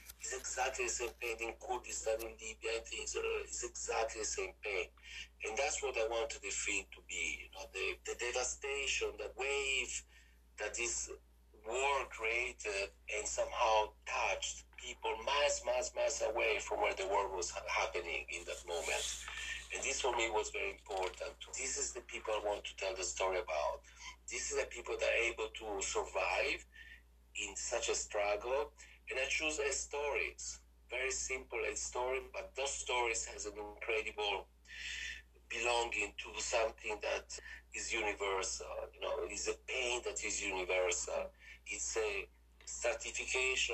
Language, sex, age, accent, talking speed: English, male, 50-69, Italian, 160 wpm